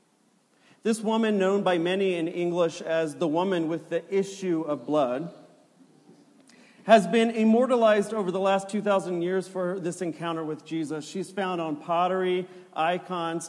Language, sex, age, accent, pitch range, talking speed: English, male, 40-59, American, 160-210 Hz, 145 wpm